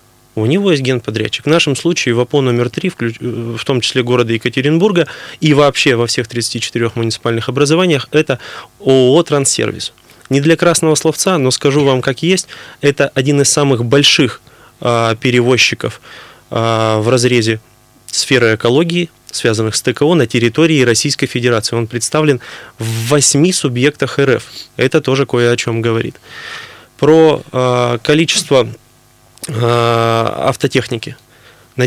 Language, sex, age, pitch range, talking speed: Russian, male, 20-39, 120-145 Hz, 135 wpm